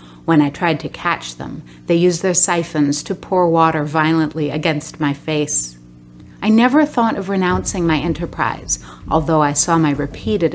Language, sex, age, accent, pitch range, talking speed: English, female, 30-49, American, 145-180 Hz, 165 wpm